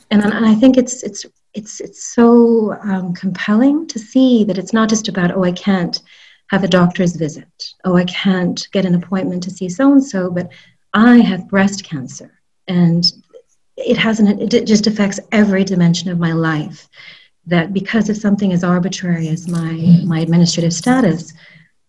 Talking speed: 175 wpm